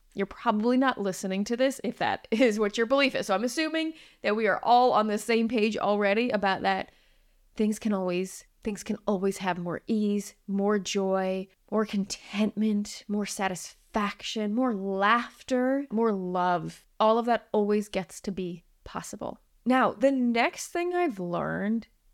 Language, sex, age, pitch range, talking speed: English, female, 20-39, 195-240 Hz, 165 wpm